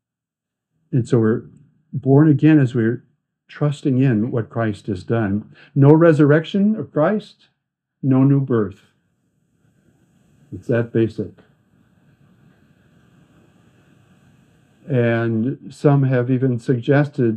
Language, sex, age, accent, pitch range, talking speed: English, male, 60-79, American, 115-145 Hz, 95 wpm